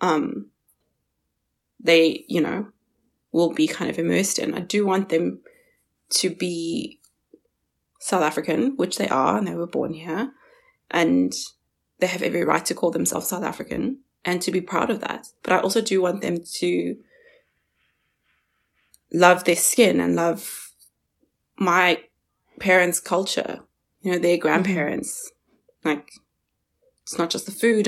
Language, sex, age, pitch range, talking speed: English, female, 20-39, 170-225 Hz, 145 wpm